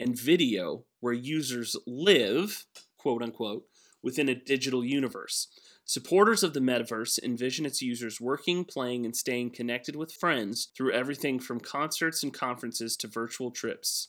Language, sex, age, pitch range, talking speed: English, male, 30-49, 120-145 Hz, 145 wpm